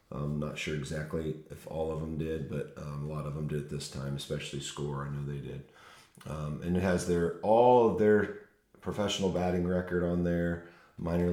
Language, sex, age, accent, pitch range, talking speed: English, male, 40-59, American, 75-90 Hz, 200 wpm